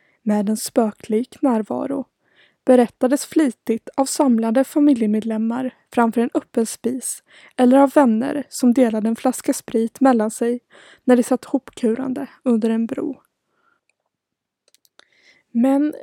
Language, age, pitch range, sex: Swedish, 20-39, 230-280 Hz, female